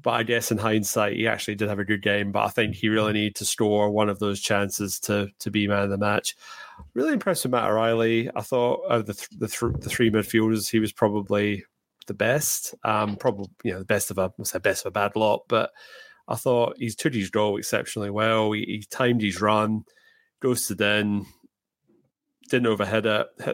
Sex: male